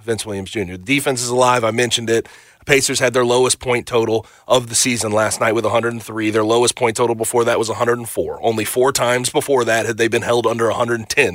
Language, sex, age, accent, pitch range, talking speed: English, male, 30-49, American, 120-170 Hz, 220 wpm